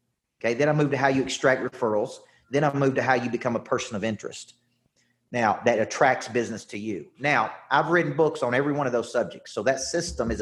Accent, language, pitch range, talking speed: American, English, 125-155 Hz, 230 wpm